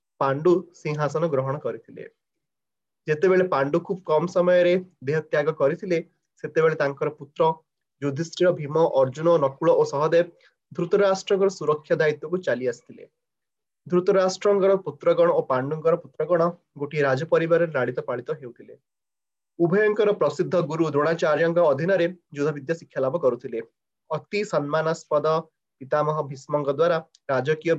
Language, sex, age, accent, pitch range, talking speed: English, male, 30-49, Indian, 150-180 Hz, 115 wpm